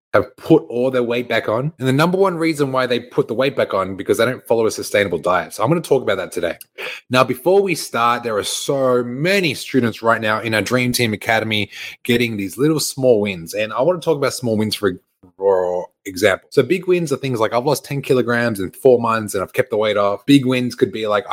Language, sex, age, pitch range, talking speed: English, male, 20-39, 105-135 Hz, 250 wpm